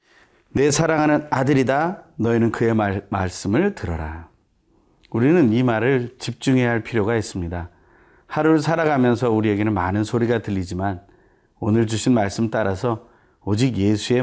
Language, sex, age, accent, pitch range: Korean, male, 30-49, native, 95-125 Hz